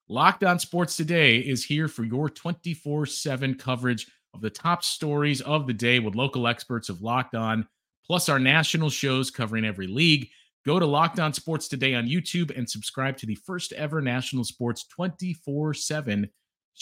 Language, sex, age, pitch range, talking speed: English, male, 30-49, 120-150 Hz, 165 wpm